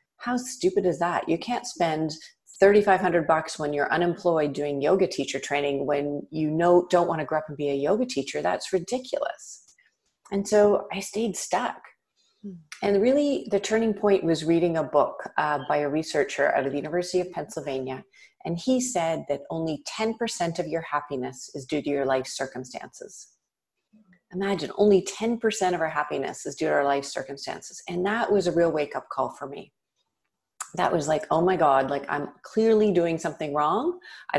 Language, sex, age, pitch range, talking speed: English, female, 40-59, 145-195 Hz, 180 wpm